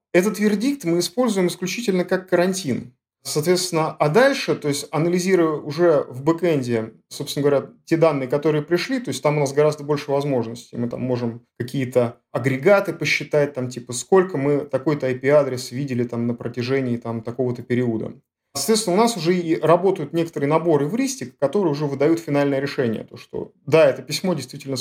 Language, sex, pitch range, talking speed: Russian, male, 135-180 Hz, 170 wpm